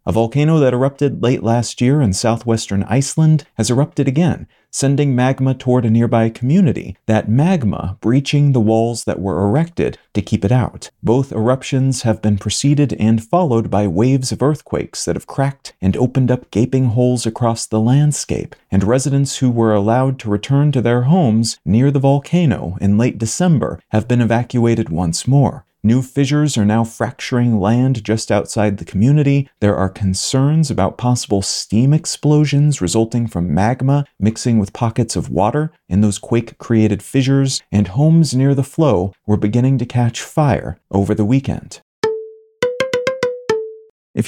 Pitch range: 110-140 Hz